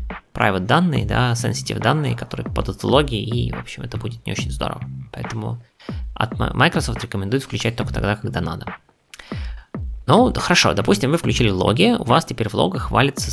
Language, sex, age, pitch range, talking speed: Russian, male, 20-39, 100-120 Hz, 165 wpm